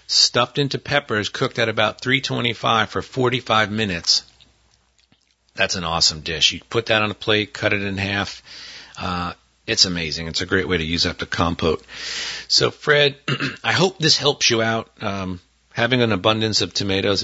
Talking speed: 175 wpm